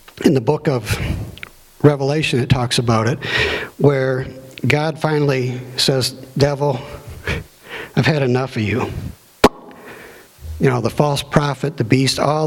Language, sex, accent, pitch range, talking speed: English, male, American, 115-145 Hz, 130 wpm